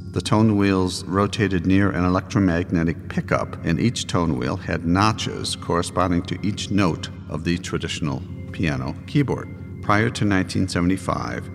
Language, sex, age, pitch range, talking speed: English, male, 50-69, 85-100 Hz, 135 wpm